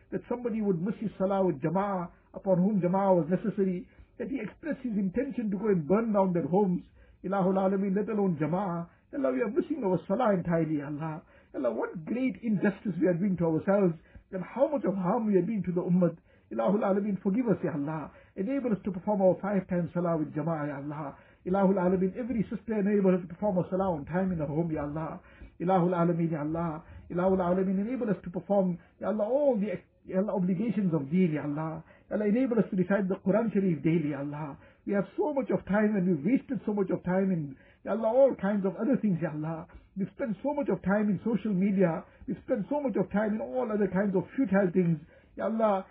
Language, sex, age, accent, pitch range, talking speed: English, male, 60-79, Indian, 175-210 Hz, 225 wpm